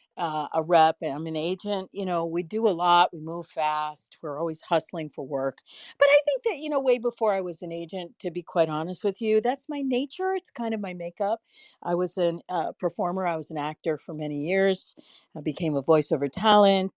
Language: English